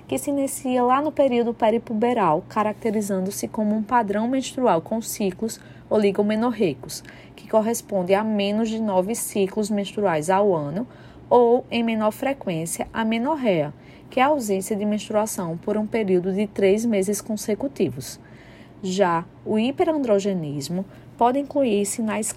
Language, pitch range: Portuguese, 190-235 Hz